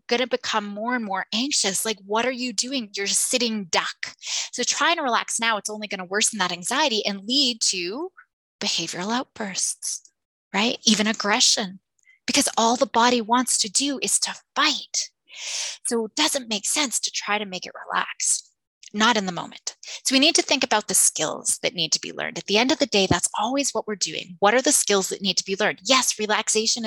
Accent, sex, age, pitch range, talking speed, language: American, female, 20-39, 195-255 Hz, 215 wpm, English